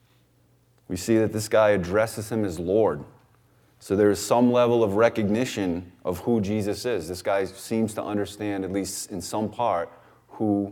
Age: 30-49